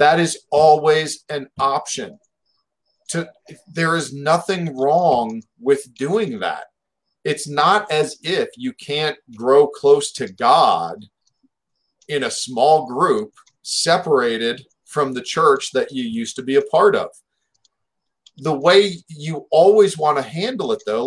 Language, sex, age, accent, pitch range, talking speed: English, male, 40-59, American, 140-220 Hz, 135 wpm